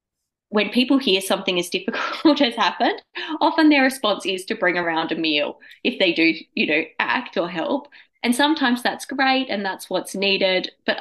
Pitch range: 165-240 Hz